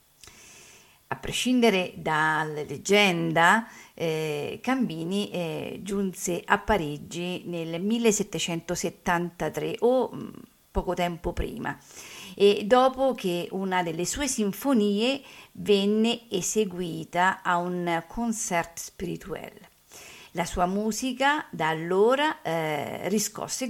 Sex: female